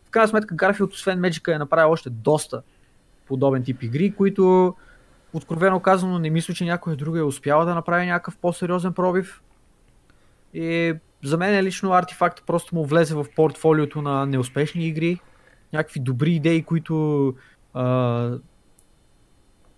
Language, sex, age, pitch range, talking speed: Bulgarian, male, 20-39, 140-170 Hz, 140 wpm